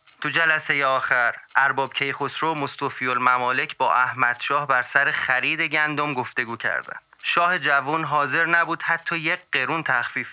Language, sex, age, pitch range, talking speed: Persian, male, 30-49, 130-170 Hz, 145 wpm